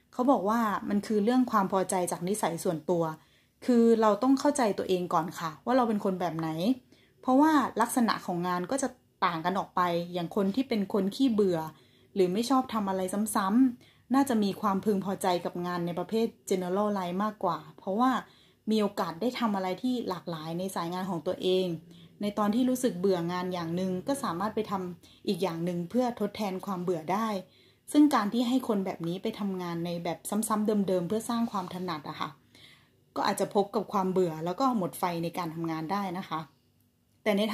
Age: 20-39